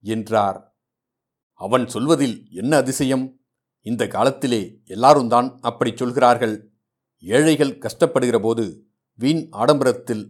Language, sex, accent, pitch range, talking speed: Tamil, male, native, 120-145 Hz, 80 wpm